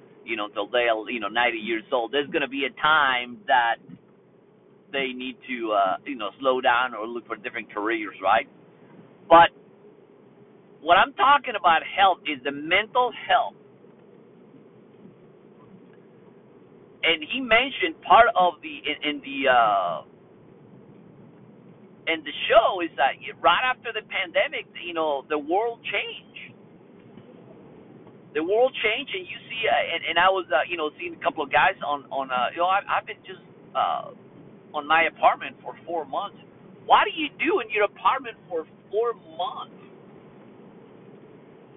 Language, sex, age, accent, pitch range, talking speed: English, male, 50-69, American, 160-240 Hz, 155 wpm